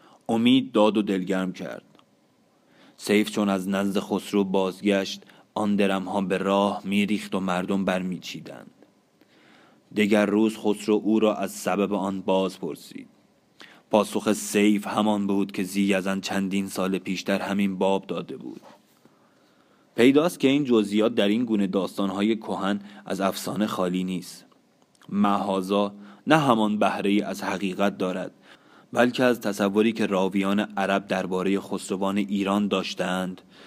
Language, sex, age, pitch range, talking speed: Persian, male, 30-49, 95-105 Hz, 130 wpm